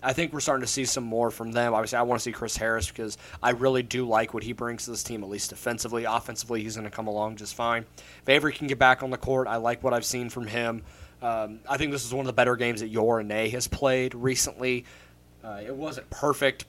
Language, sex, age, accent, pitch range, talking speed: English, male, 20-39, American, 110-125 Hz, 265 wpm